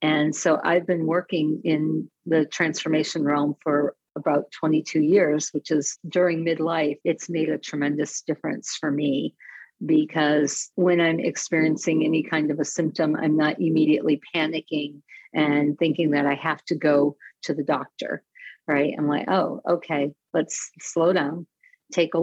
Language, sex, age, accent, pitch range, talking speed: English, female, 50-69, American, 150-175 Hz, 155 wpm